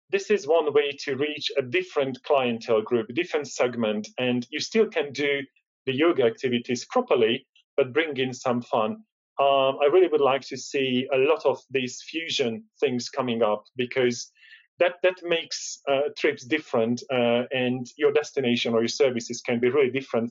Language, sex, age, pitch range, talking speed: English, male, 40-59, 125-165 Hz, 175 wpm